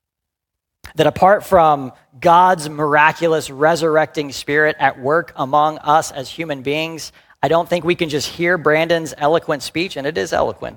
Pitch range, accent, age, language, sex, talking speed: 110-180 Hz, American, 40-59, English, male, 155 wpm